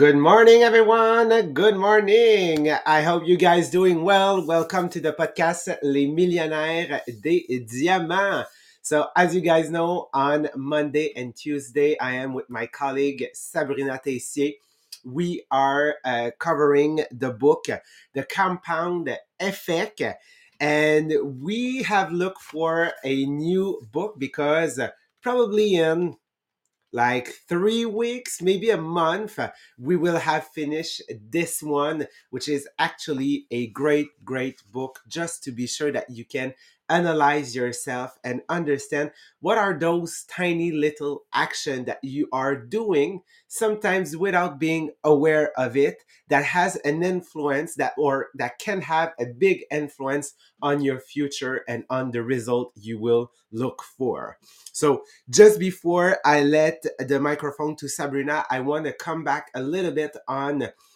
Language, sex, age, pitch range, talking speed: English, male, 30-49, 140-175 Hz, 140 wpm